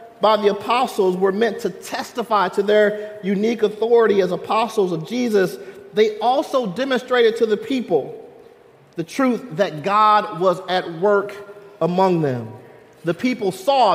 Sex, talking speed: male, 140 wpm